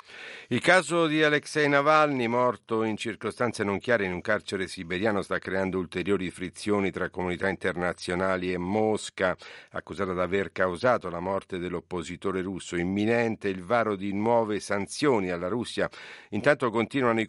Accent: native